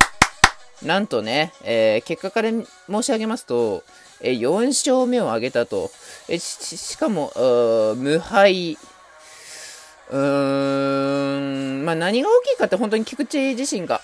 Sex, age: male, 20-39